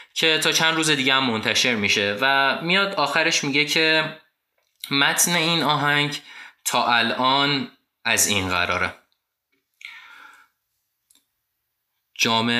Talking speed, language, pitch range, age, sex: 105 wpm, Persian, 100-115 Hz, 20-39, male